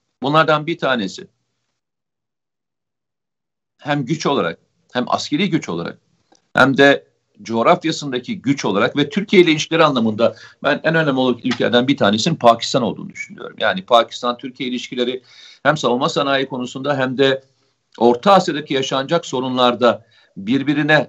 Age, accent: 50-69, native